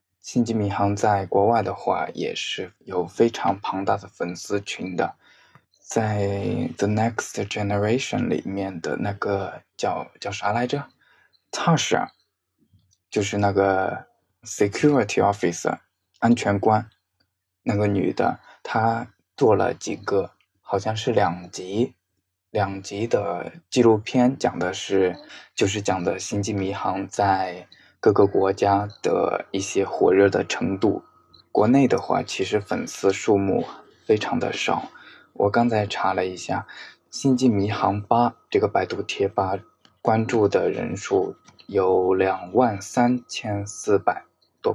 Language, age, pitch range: Chinese, 20-39, 95-115 Hz